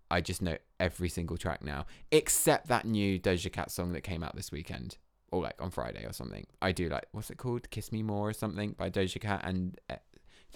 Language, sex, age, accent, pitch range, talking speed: English, male, 20-39, British, 85-105 Hz, 240 wpm